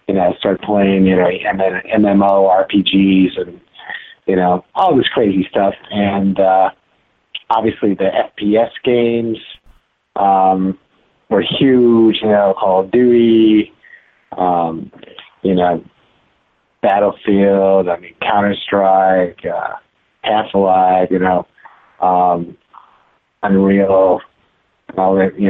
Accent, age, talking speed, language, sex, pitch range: American, 30-49, 105 wpm, English, male, 95-105 Hz